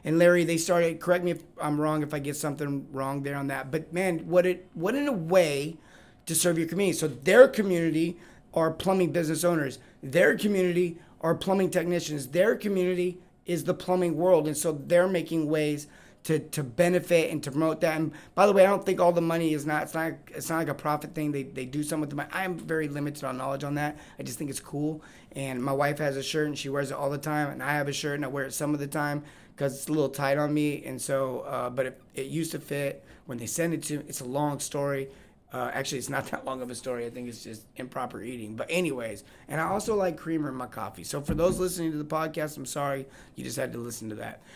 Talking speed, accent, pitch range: 255 wpm, American, 140-175 Hz